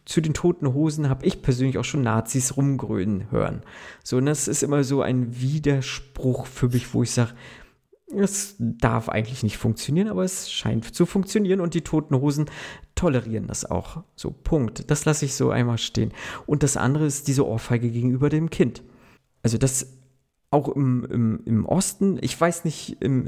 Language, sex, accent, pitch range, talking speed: German, male, German, 115-140 Hz, 180 wpm